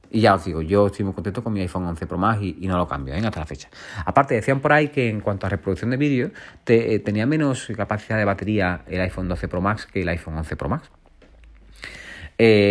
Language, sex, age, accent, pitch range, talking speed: Spanish, male, 30-49, Spanish, 95-120 Hz, 250 wpm